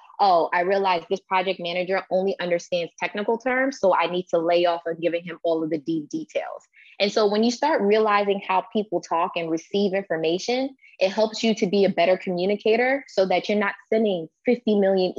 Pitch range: 175-210 Hz